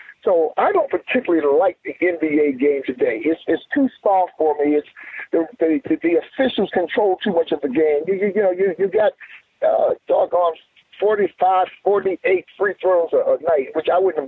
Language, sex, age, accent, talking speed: English, male, 50-69, American, 205 wpm